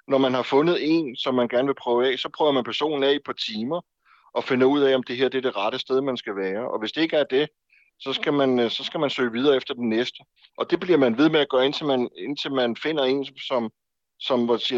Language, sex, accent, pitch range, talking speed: Danish, male, native, 125-150 Hz, 270 wpm